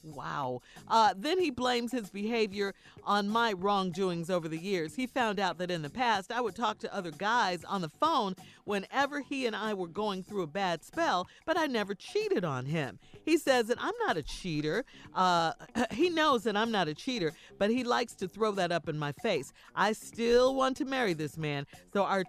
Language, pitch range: English, 170-245 Hz